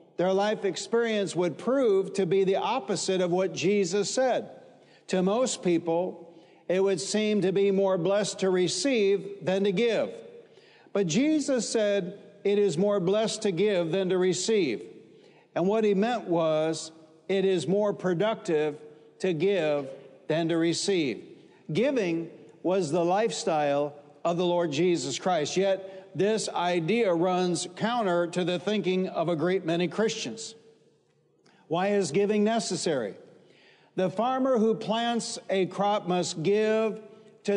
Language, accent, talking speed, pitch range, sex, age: English, American, 140 wpm, 175-215 Hz, male, 60-79